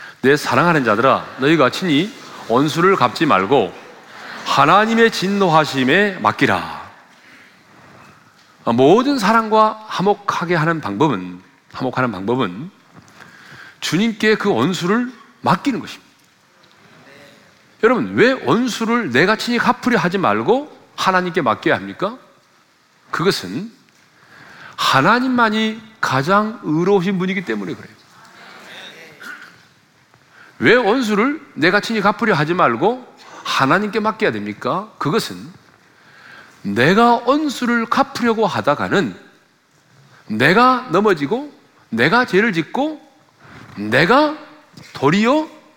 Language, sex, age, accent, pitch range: Korean, male, 40-59, native, 165-240 Hz